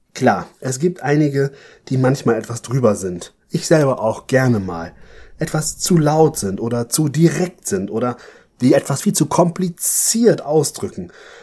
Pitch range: 115-155 Hz